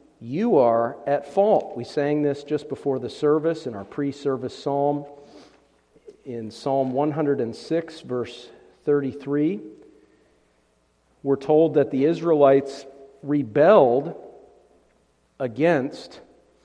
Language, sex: English, male